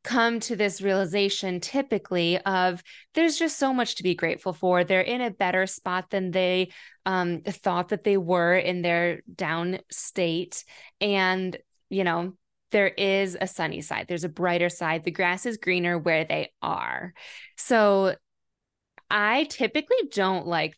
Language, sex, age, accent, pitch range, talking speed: English, female, 20-39, American, 180-235 Hz, 155 wpm